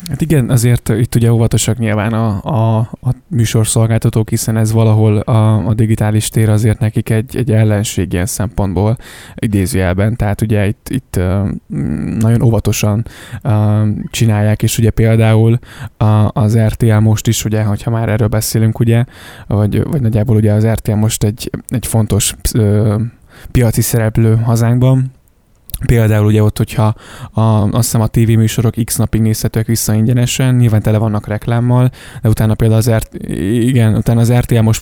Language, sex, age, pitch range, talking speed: Hungarian, male, 20-39, 105-115 Hz, 140 wpm